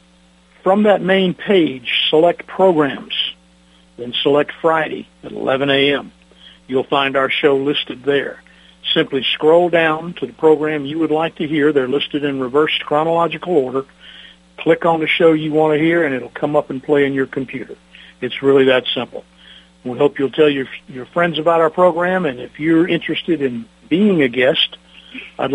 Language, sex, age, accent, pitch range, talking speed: English, male, 60-79, American, 125-160 Hz, 175 wpm